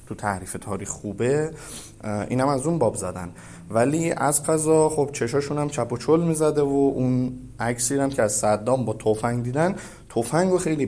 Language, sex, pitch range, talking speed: Persian, male, 105-140 Hz, 175 wpm